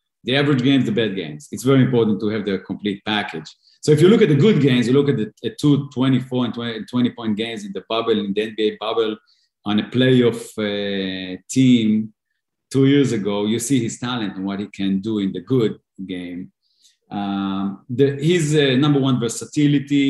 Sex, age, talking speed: male, 40-59, 205 wpm